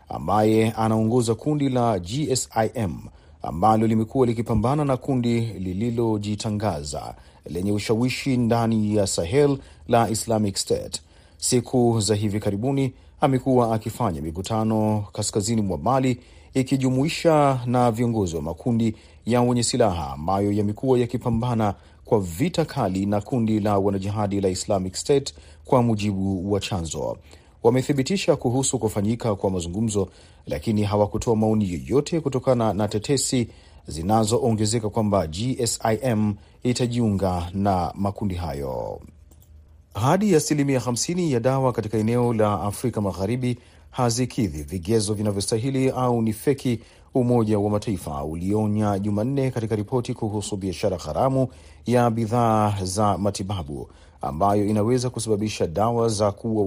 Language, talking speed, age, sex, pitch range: Swahili, 115 wpm, 40-59, male, 100-125 Hz